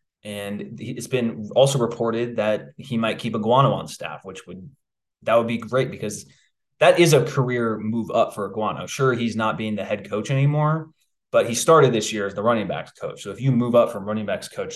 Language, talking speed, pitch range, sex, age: English, 225 wpm, 105-130 Hz, male, 20-39